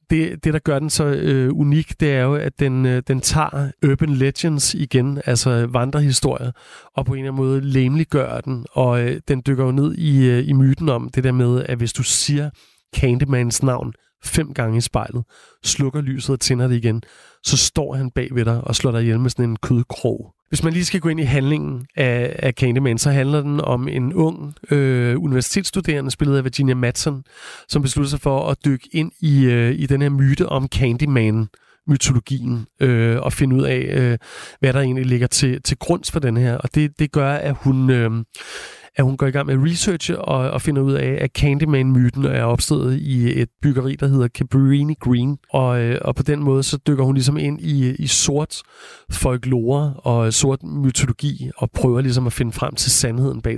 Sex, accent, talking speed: male, native, 205 wpm